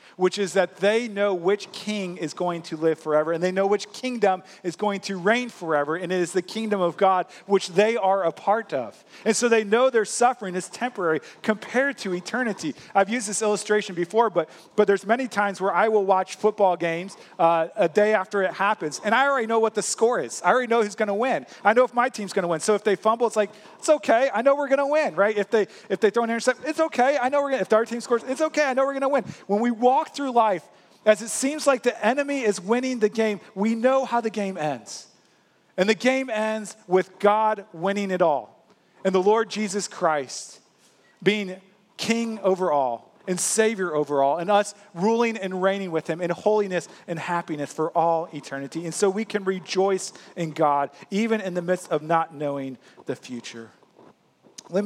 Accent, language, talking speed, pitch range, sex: American, English, 225 wpm, 175-225 Hz, male